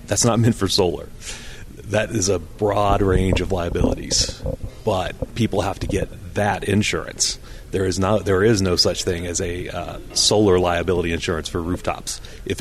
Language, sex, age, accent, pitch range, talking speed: English, male, 30-49, American, 90-105 Hz, 170 wpm